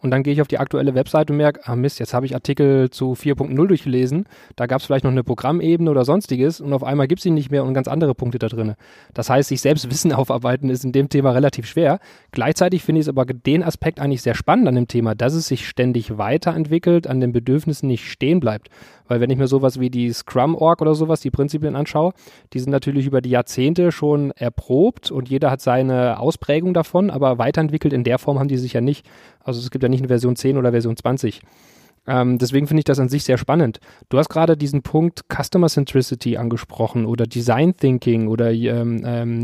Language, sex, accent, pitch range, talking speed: German, male, German, 125-155 Hz, 225 wpm